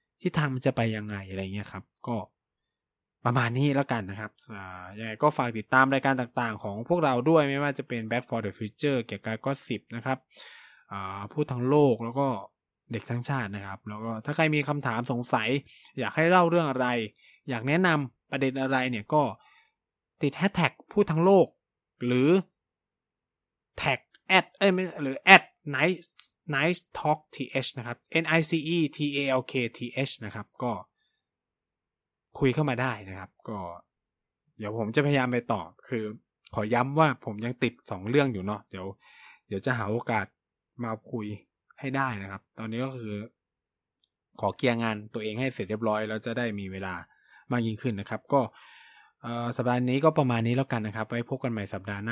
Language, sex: Thai, male